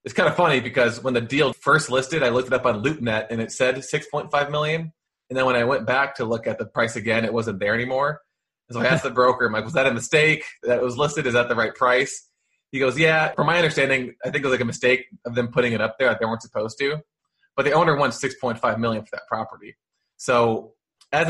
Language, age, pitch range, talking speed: English, 20-39, 115-130 Hz, 270 wpm